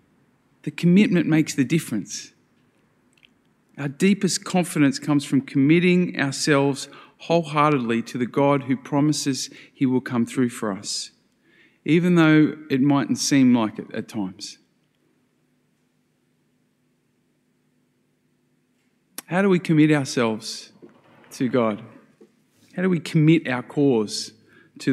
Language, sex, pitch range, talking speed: English, male, 120-165 Hz, 115 wpm